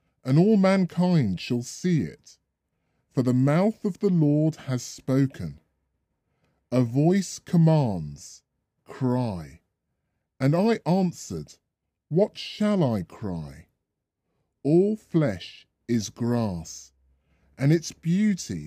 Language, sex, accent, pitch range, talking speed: English, female, British, 105-165 Hz, 105 wpm